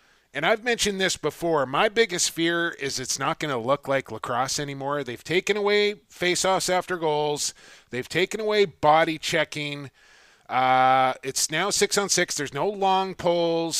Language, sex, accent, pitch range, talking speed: English, male, American, 140-185 Hz, 160 wpm